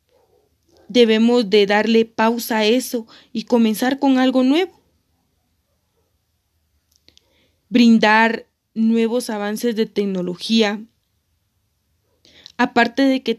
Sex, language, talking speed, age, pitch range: female, Spanish, 85 wpm, 30-49, 195-250 Hz